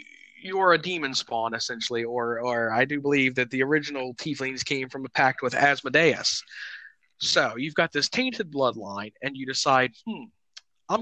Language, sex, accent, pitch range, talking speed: English, male, American, 130-165 Hz, 170 wpm